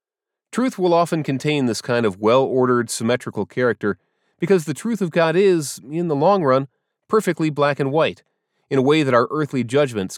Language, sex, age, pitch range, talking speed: English, male, 30-49, 130-180 Hz, 185 wpm